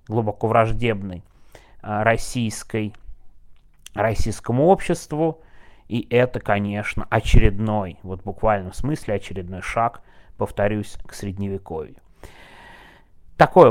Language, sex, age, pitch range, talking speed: Russian, male, 30-49, 100-130 Hz, 85 wpm